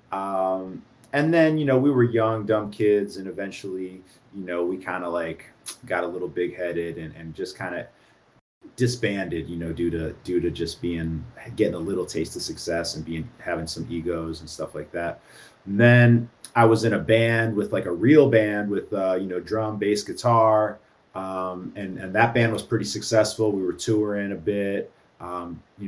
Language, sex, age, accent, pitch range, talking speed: English, male, 30-49, American, 90-115 Hz, 195 wpm